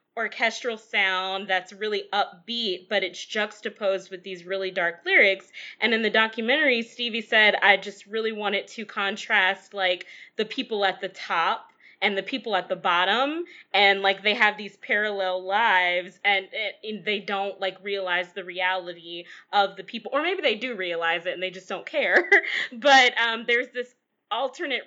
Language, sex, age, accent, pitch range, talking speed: English, female, 20-39, American, 195-250 Hz, 175 wpm